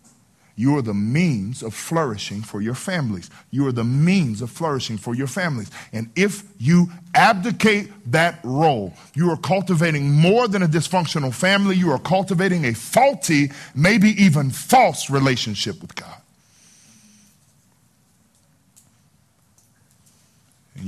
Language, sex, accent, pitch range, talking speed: English, male, American, 110-165 Hz, 125 wpm